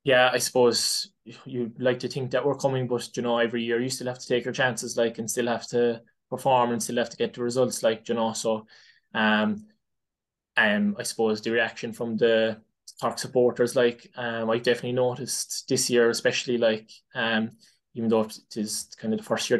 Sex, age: male, 20-39